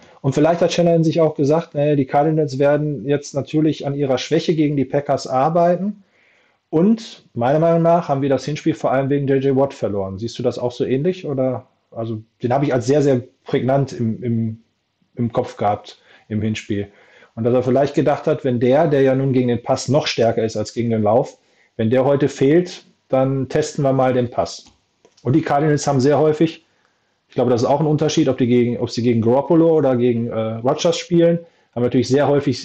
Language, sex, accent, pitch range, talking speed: German, male, German, 120-145 Hz, 215 wpm